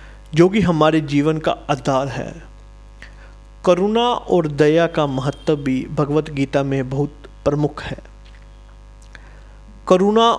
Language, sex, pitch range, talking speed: Hindi, male, 155-200 Hz, 110 wpm